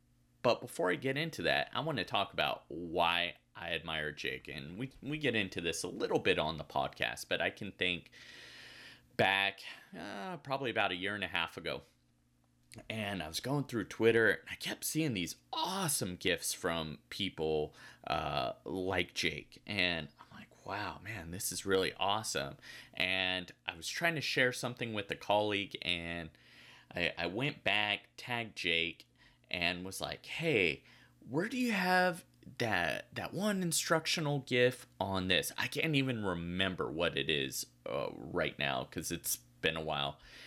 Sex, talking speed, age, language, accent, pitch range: male, 170 wpm, 30-49, English, American, 85-125 Hz